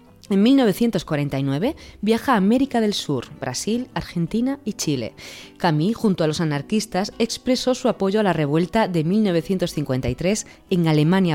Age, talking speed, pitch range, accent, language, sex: 20-39, 135 wpm, 155-230 Hz, Spanish, Spanish, female